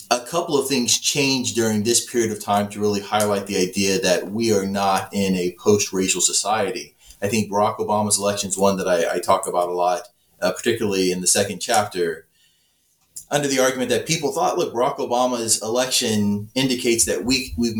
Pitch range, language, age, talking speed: 100-120 Hz, English, 30-49, 190 wpm